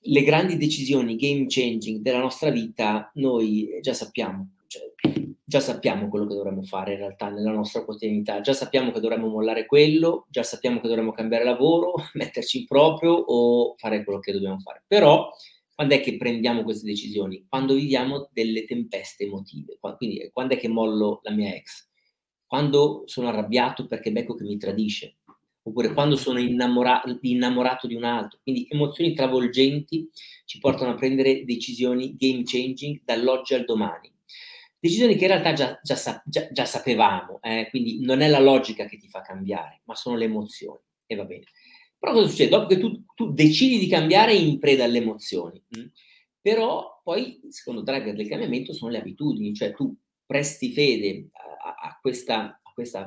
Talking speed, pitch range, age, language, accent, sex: 170 wpm, 110-150 Hz, 30-49, Italian, native, male